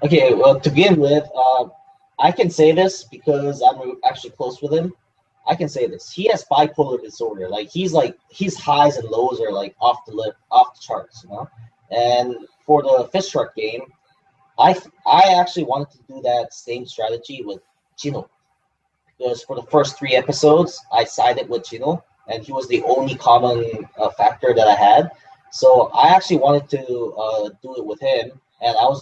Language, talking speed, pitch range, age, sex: English, 190 wpm, 115-185 Hz, 20-39, male